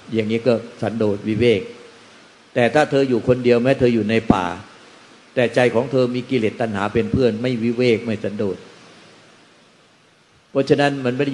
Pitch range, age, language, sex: 110-125 Hz, 60-79, Thai, male